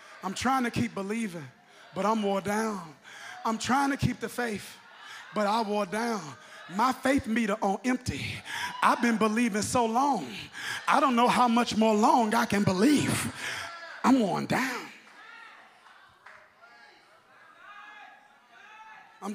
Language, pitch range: Russian, 170-240 Hz